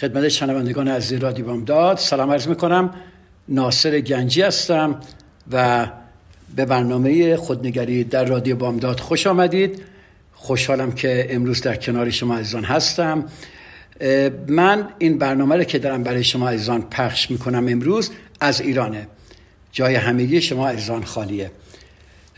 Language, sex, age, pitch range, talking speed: Persian, male, 60-79, 125-150 Hz, 125 wpm